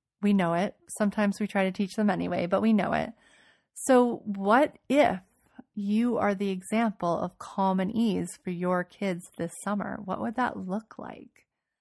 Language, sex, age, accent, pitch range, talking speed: English, female, 30-49, American, 180-215 Hz, 180 wpm